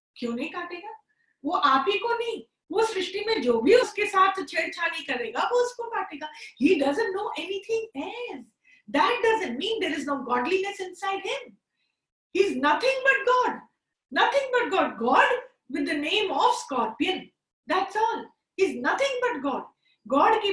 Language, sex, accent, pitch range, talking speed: Hindi, female, native, 300-430 Hz, 75 wpm